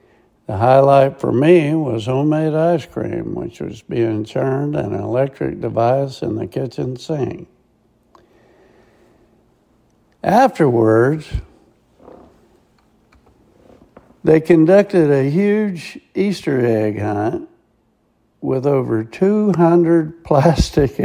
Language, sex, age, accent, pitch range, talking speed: English, male, 60-79, American, 120-160 Hz, 90 wpm